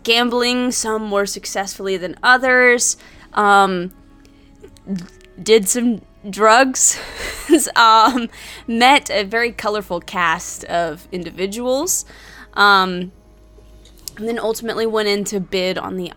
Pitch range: 180-235 Hz